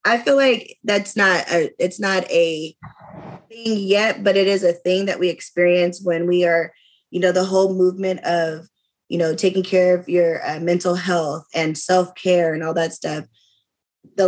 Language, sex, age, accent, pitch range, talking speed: English, female, 20-39, American, 170-190 Hz, 185 wpm